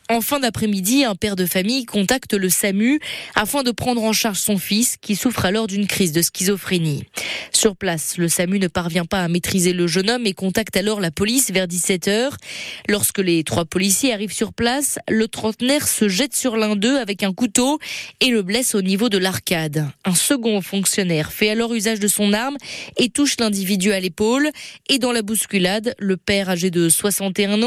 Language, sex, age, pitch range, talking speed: French, female, 20-39, 190-235 Hz, 195 wpm